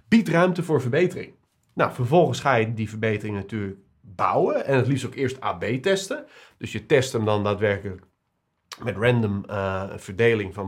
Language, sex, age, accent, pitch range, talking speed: Dutch, male, 40-59, Dutch, 110-150 Hz, 170 wpm